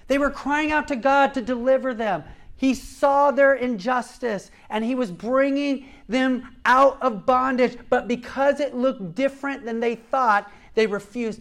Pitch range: 200-270 Hz